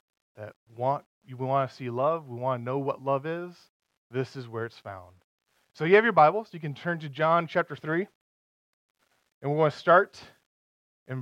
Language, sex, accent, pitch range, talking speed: English, male, American, 135-185 Hz, 205 wpm